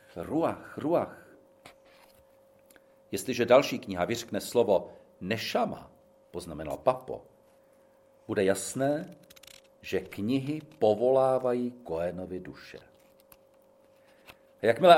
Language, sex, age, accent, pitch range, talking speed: Czech, male, 50-69, native, 110-175 Hz, 75 wpm